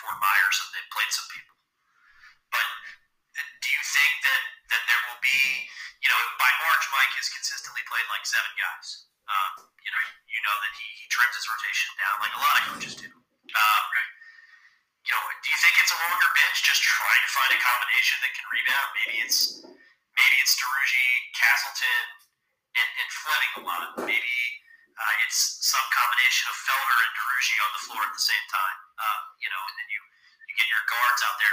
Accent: American